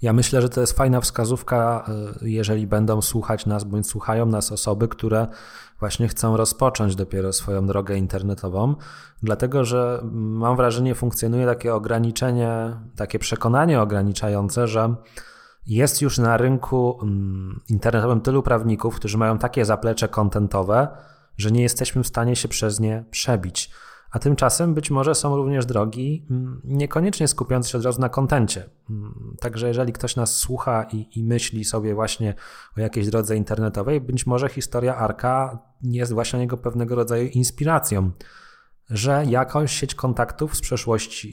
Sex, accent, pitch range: male, native, 110-125 Hz